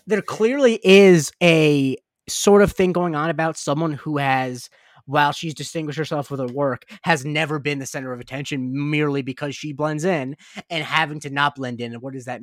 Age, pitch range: 20-39, 125-160 Hz